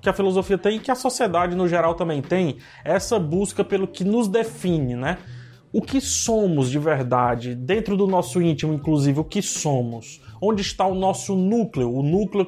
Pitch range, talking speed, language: 135-195 Hz, 190 wpm, Portuguese